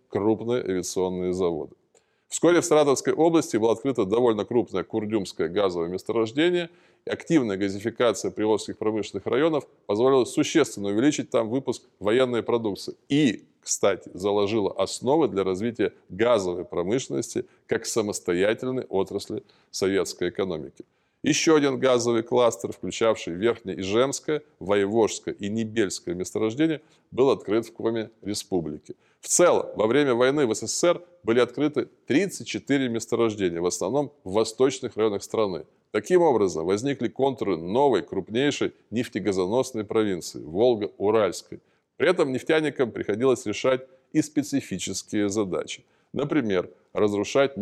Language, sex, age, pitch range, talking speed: Russian, male, 20-39, 100-135 Hz, 115 wpm